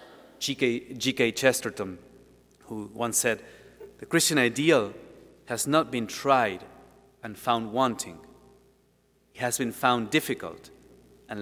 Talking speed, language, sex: 115 wpm, English, male